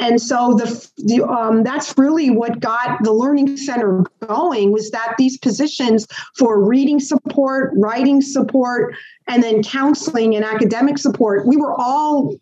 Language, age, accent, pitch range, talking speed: English, 40-59, American, 220-270 Hz, 150 wpm